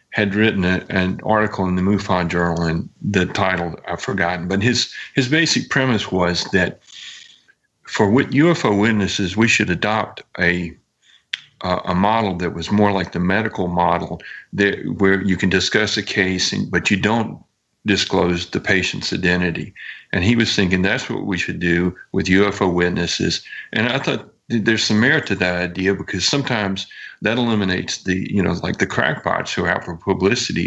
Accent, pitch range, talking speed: American, 90-110 Hz, 175 wpm